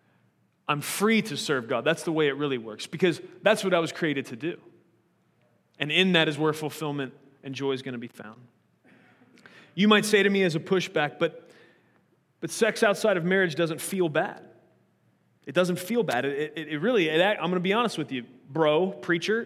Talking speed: 205 wpm